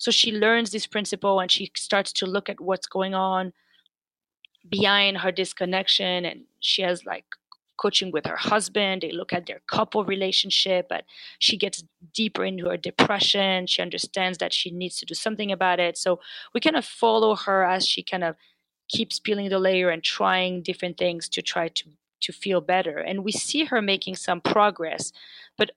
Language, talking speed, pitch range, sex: English, 185 wpm, 175-205 Hz, female